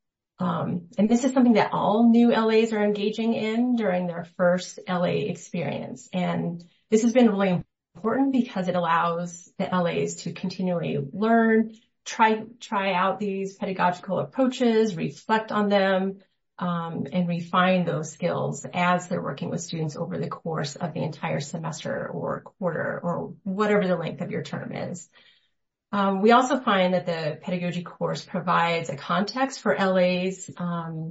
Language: English